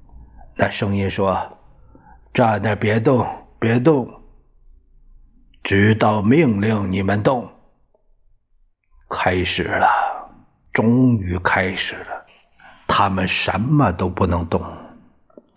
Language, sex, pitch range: Chinese, male, 90-120 Hz